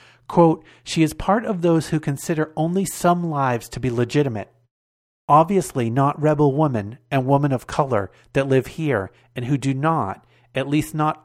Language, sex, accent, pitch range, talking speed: English, male, American, 125-160 Hz, 170 wpm